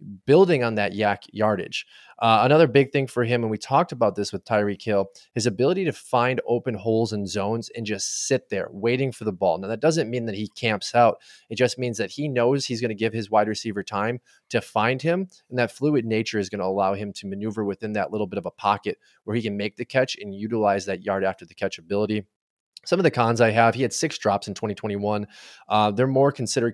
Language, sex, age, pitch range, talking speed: English, male, 20-39, 100-120 Hz, 240 wpm